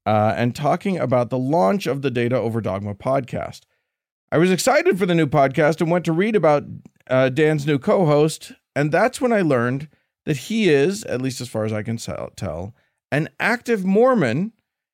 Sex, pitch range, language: male, 115-165 Hz, English